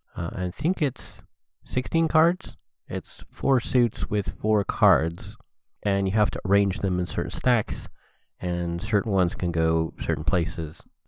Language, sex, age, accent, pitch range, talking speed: English, male, 30-49, American, 85-105 Hz, 150 wpm